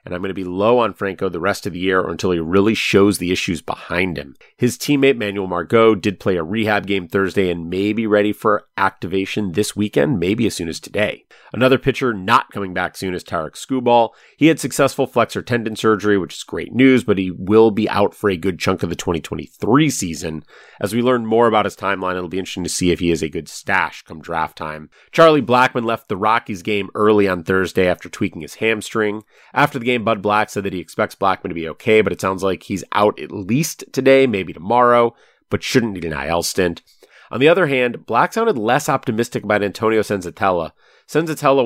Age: 30-49